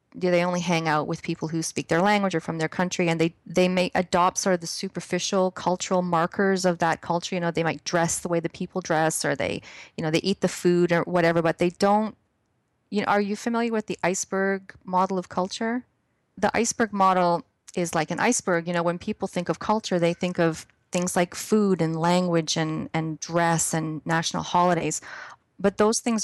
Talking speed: 215 wpm